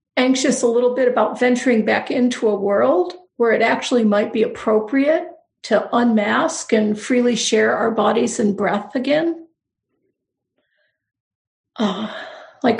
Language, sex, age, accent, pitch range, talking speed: English, female, 50-69, American, 220-270 Hz, 125 wpm